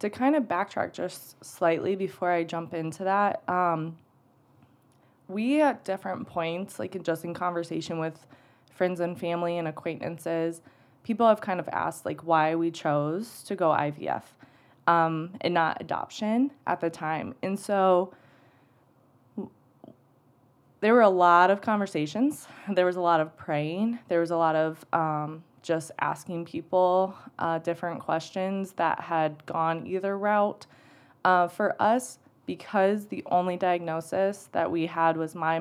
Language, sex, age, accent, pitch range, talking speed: English, female, 20-39, American, 155-185 Hz, 150 wpm